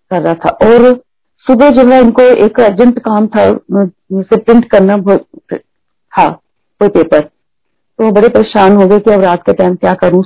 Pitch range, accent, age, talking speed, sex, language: 190-230 Hz, native, 40-59, 175 wpm, female, Hindi